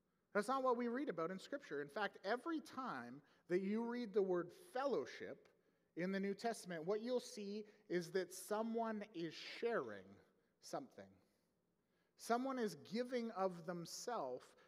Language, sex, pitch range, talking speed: English, male, 165-225 Hz, 145 wpm